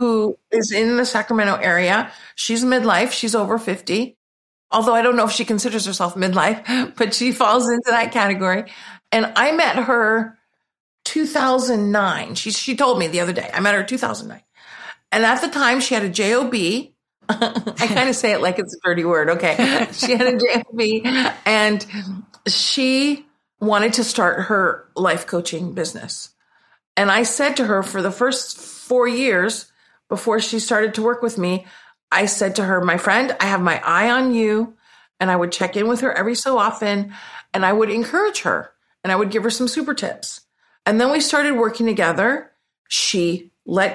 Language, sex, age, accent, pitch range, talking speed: English, female, 50-69, American, 200-250 Hz, 185 wpm